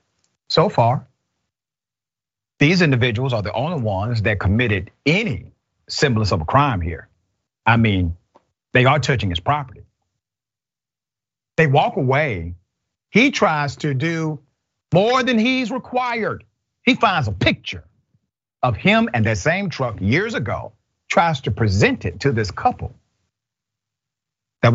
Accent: American